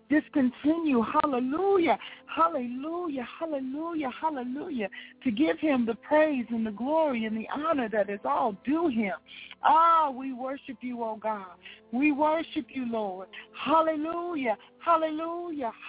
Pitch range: 260-345 Hz